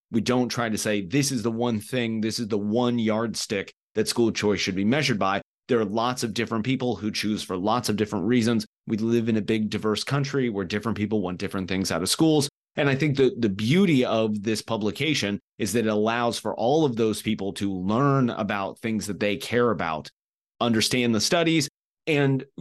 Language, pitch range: English, 105-130 Hz